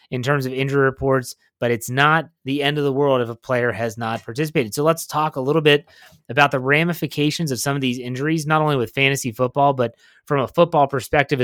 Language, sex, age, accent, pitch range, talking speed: English, male, 30-49, American, 130-165 Hz, 225 wpm